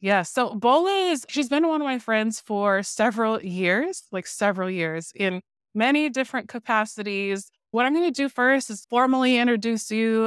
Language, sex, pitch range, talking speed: English, female, 185-235 Hz, 175 wpm